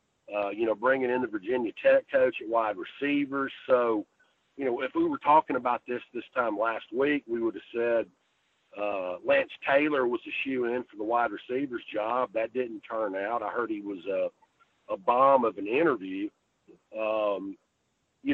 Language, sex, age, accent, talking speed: English, male, 50-69, American, 185 wpm